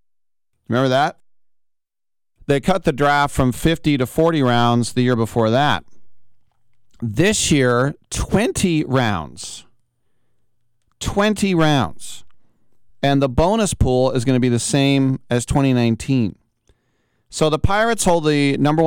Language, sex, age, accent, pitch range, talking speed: English, male, 40-59, American, 105-135 Hz, 125 wpm